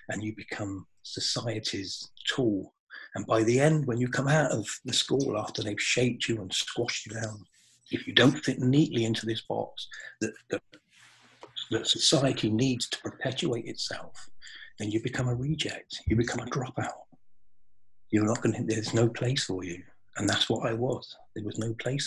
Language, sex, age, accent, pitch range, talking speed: English, male, 40-59, British, 105-130 Hz, 180 wpm